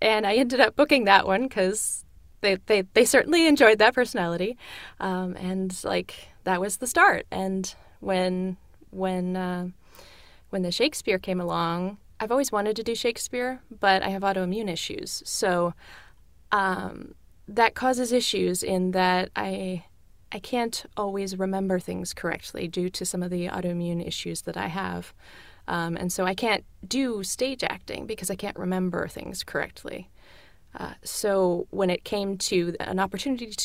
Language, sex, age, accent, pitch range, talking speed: English, female, 20-39, American, 185-235 Hz, 160 wpm